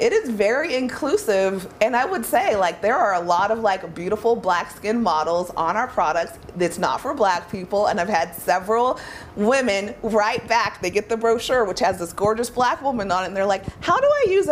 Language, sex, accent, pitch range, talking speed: English, female, American, 180-235 Hz, 220 wpm